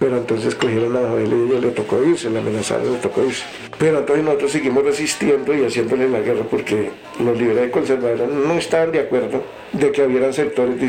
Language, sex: Spanish, male